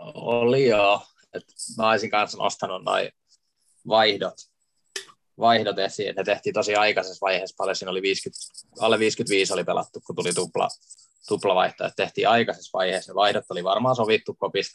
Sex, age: male, 20-39